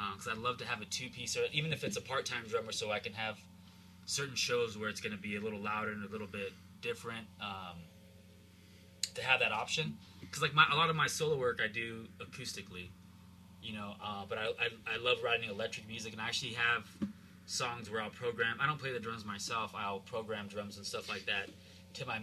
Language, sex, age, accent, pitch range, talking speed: English, male, 20-39, American, 95-120 Hz, 235 wpm